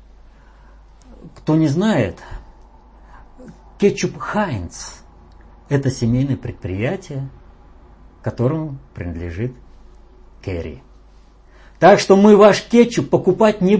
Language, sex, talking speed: Russian, male, 80 wpm